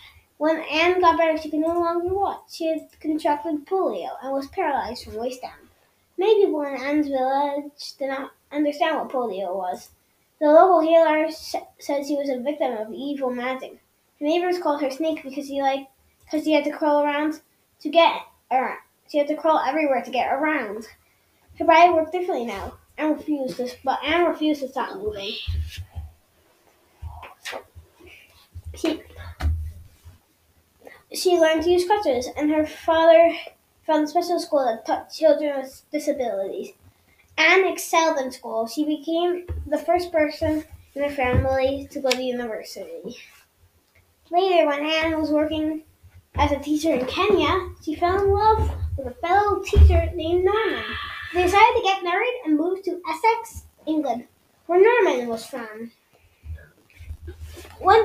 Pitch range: 255-335 Hz